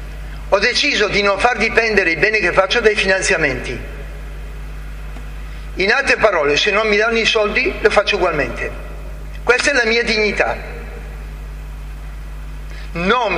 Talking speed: 135 wpm